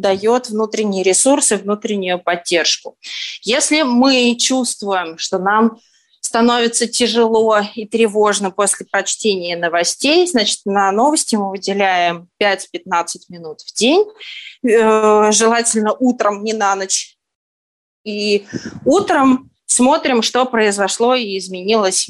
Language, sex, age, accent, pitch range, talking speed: Russian, female, 20-39, native, 200-250 Hz, 105 wpm